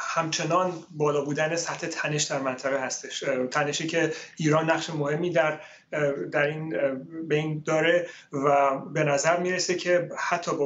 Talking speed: 140 wpm